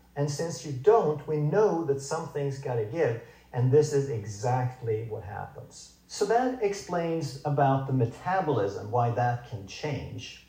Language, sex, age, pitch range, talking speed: English, male, 50-69, 115-150 Hz, 155 wpm